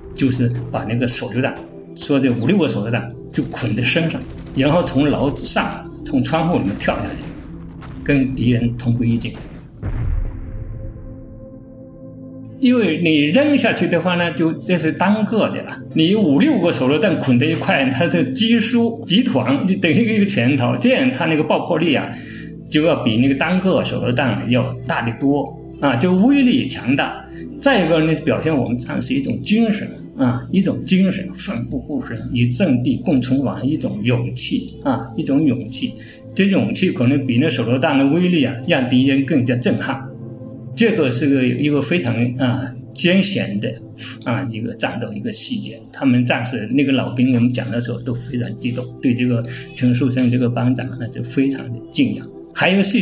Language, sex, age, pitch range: Chinese, male, 50-69, 125-170 Hz